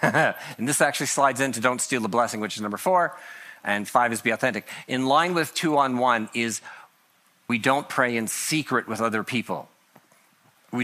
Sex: male